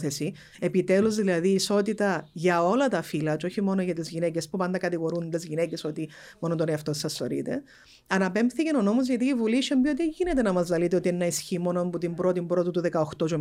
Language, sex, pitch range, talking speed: Greek, female, 175-215 Hz, 210 wpm